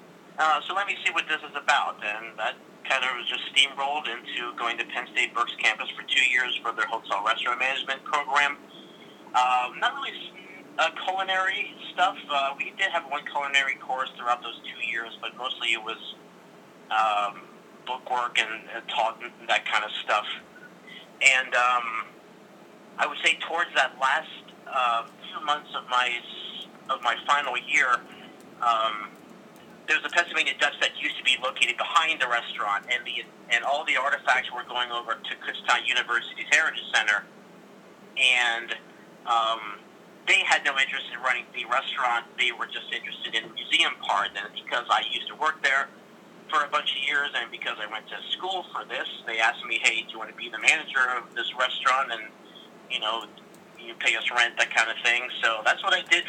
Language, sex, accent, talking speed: English, male, American, 190 wpm